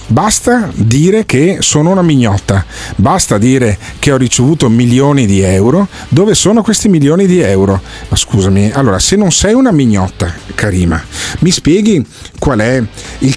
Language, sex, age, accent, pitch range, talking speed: Italian, male, 40-59, native, 105-155 Hz, 155 wpm